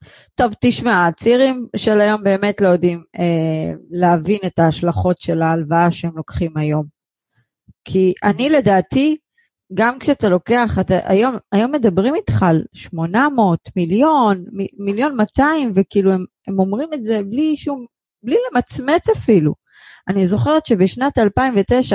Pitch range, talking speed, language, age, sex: 175-230 Hz, 135 wpm, Hebrew, 30-49, female